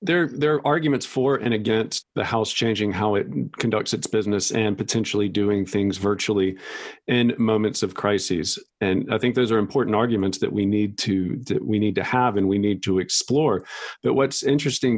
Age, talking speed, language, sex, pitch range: 40-59, 190 wpm, English, male, 110-130 Hz